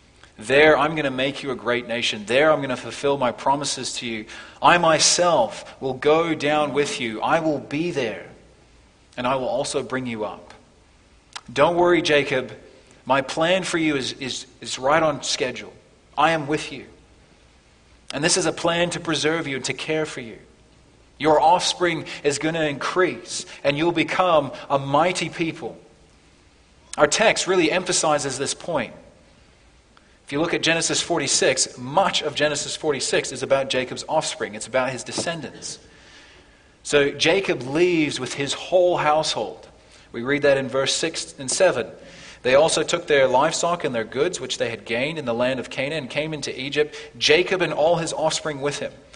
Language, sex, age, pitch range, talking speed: English, male, 30-49, 130-160 Hz, 175 wpm